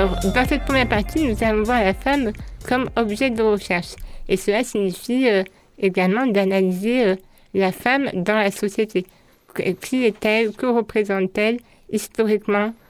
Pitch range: 190-225 Hz